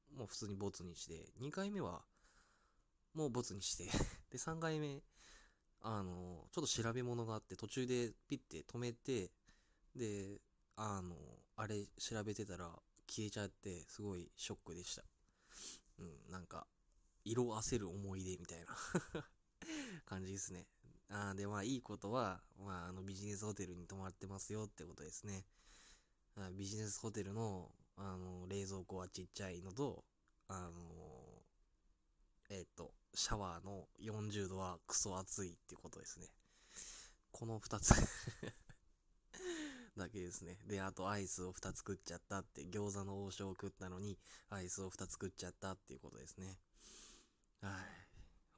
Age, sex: 20-39, male